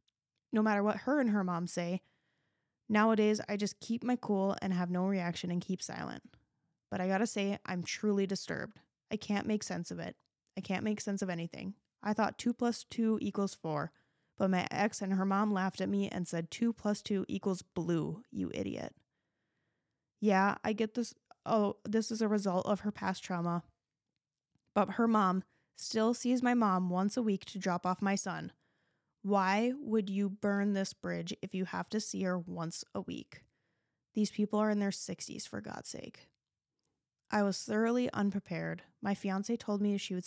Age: 10-29